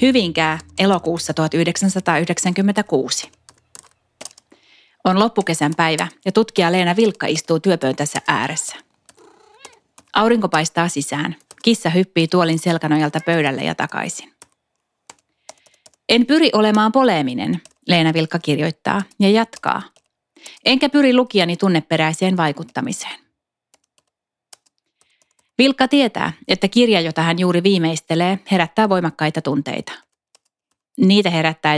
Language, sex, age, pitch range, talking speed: Finnish, female, 30-49, 160-215 Hz, 95 wpm